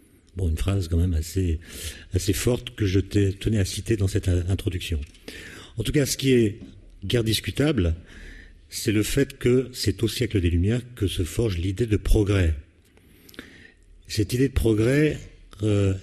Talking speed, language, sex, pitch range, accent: 165 wpm, French, male, 90-115 Hz, French